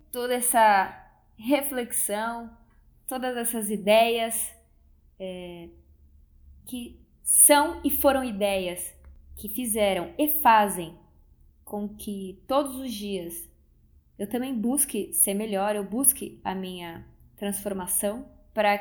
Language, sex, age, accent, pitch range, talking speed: Portuguese, female, 20-39, Brazilian, 175-235 Hz, 100 wpm